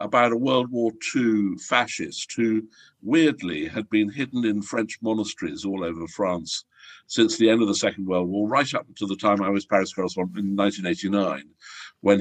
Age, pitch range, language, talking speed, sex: 60-79, 100-145 Hz, English, 180 wpm, male